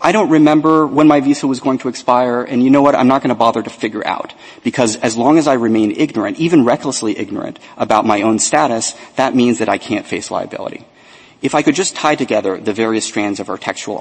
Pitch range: 110-150 Hz